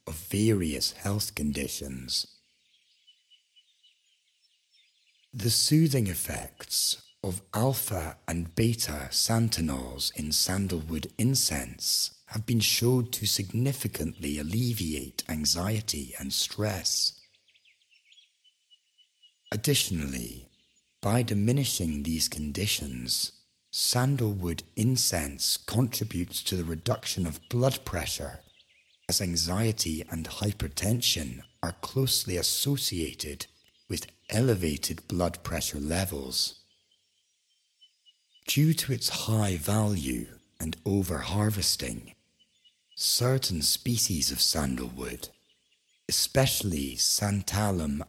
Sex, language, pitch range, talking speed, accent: male, English, 75-110 Hz, 80 wpm, British